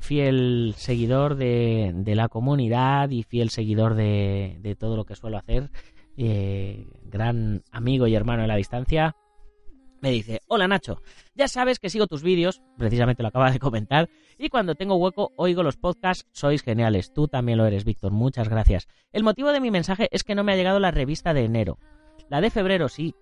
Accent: Spanish